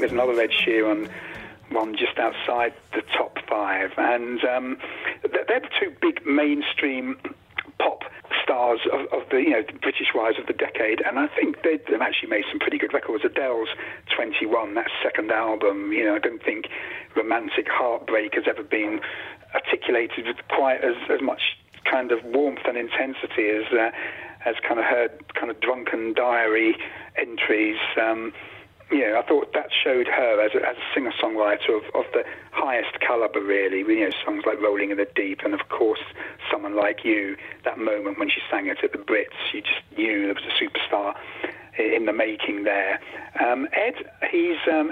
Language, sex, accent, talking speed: English, male, British, 175 wpm